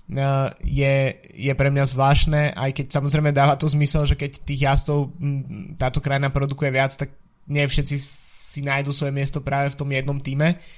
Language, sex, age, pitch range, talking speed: Slovak, male, 20-39, 140-150 Hz, 175 wpm